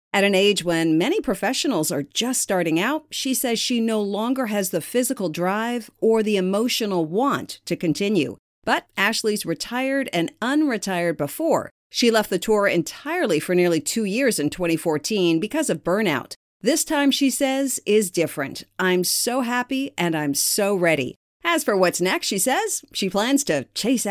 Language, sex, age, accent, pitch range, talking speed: English, female, 50-69, American, 170-255 Hz, 170 wpm